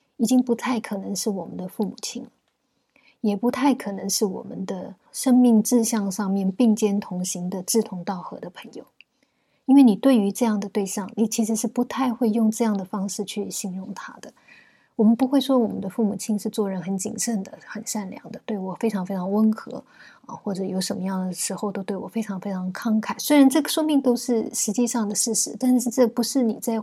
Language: Chinese